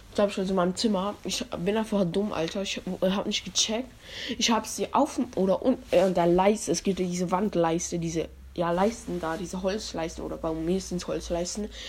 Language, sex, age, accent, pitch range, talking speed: German, female, 20-39, German, 175-220 Hz, 185 wpm